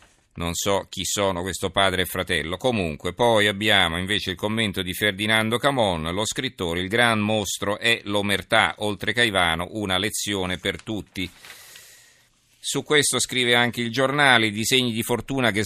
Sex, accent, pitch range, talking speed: male, native, 95-115 Hz, 155 wpm